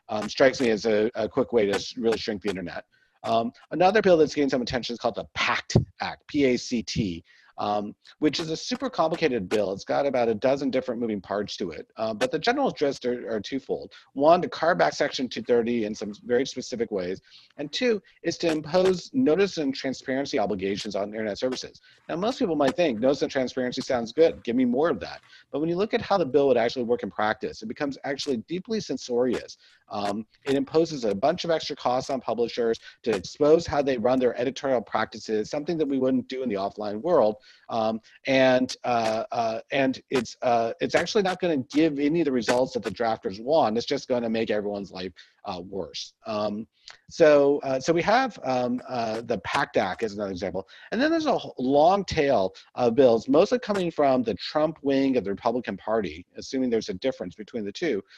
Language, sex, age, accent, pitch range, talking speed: English, male, 50-69, American, 115-160 Hz, 205 wpm